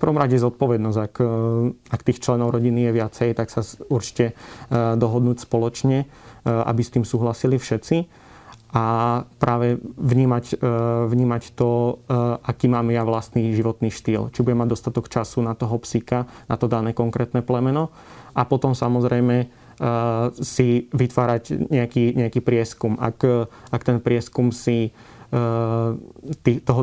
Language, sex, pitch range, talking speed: Slovak, male, 115-125 Hz, 130 wpm